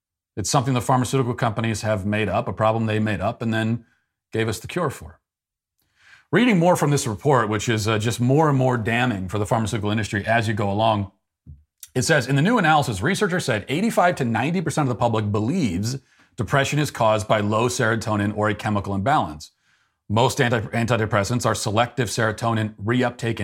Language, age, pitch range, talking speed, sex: English, 40-59, 105-140 Hz, 185 wpm, male